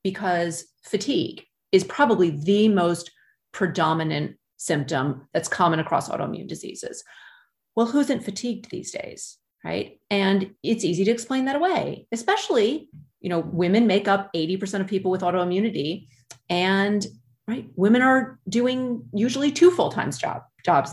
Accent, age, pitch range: American, 30-49, 180-235 Hz